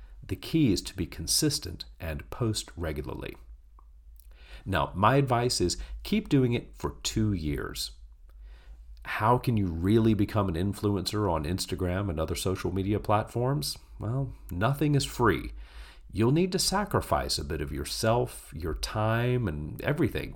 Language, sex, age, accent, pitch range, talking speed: English, male, 40-59, American, 70-115 Hz, 145 wpm